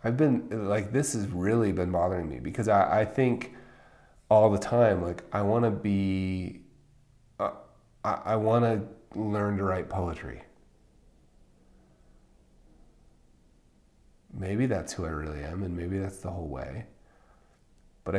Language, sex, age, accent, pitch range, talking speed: English, male, 30-49, American, 85-115 Hz, 140 wpm